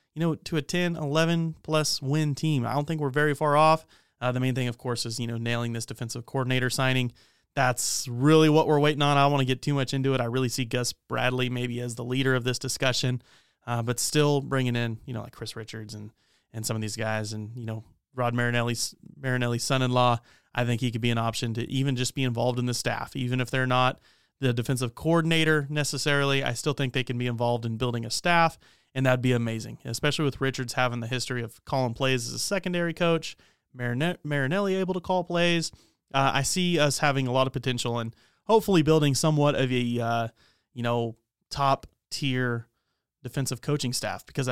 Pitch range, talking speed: 120-145 Hz, 215 wpm